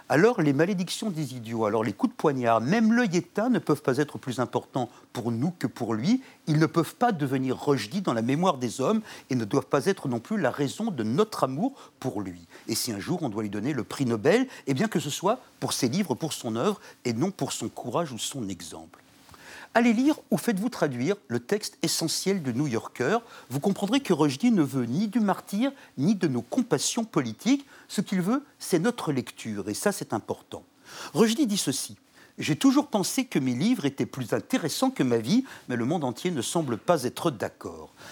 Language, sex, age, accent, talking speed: French, male, 50-69, French, 220 wpm